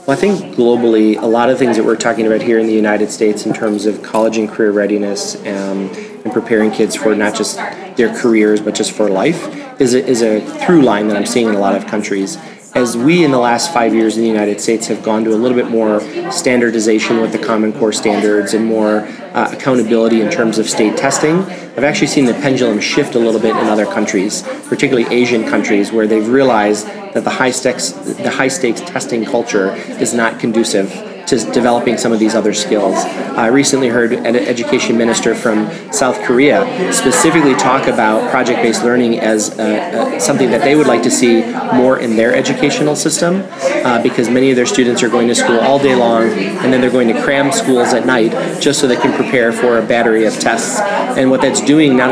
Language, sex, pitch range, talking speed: English, male, 110-125 Hz, 210 wpm